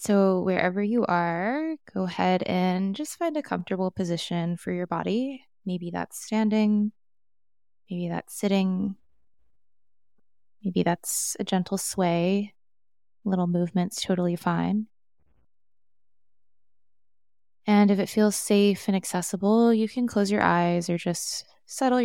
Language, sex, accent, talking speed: English, female, American, 120 wpm